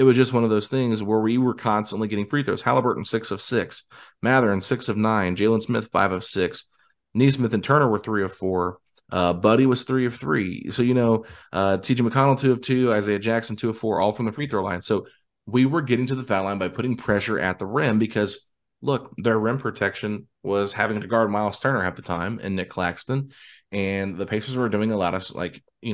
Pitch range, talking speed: 95-115 Hz, 235 wpm